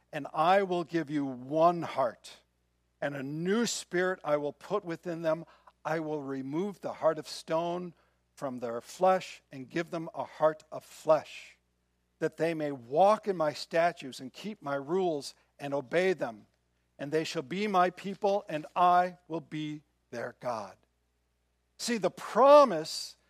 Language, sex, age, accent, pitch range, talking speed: English, male, 60-79, American, 140-200 Hz, 160 wpm